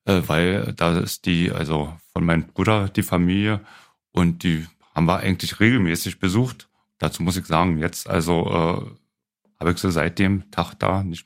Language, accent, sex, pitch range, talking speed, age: German, German, male, 90-110 Hz, 175 wpm, 40-59